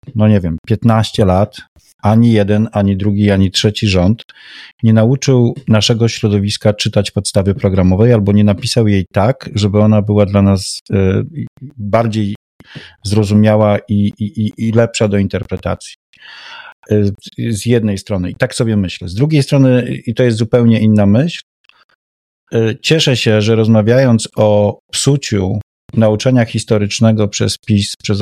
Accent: native